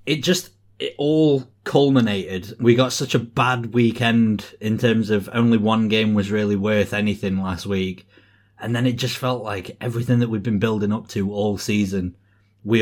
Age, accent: 30-49, British